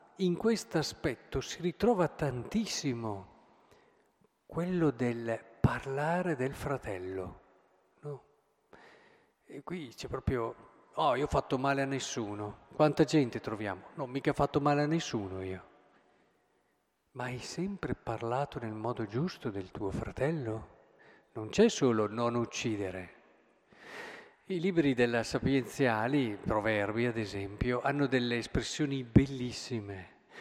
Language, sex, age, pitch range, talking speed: Italian, male, 50-69, 110-150 Hz, 120 wpm